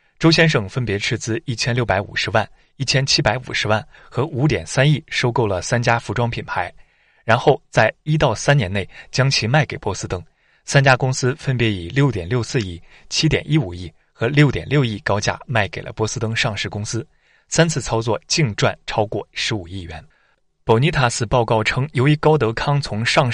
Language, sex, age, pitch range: Chinese, male, 20-39, 110-140 Hz